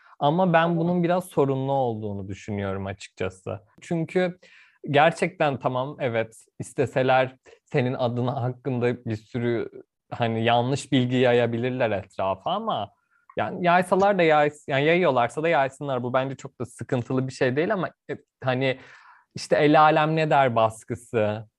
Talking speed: 135 wpm